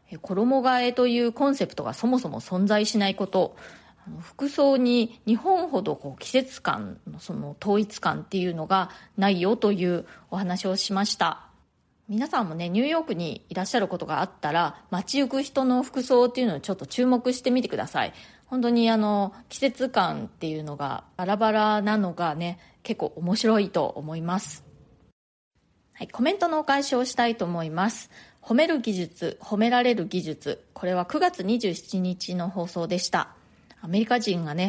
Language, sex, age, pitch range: Japanese, female, 30-49, 180-245 Hz